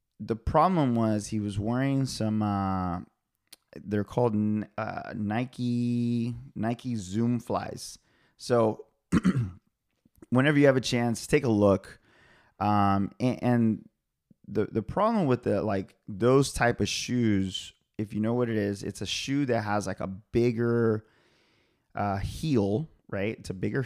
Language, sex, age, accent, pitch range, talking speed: English, male, 30-49, American, 100-120 Hz, 145 wpm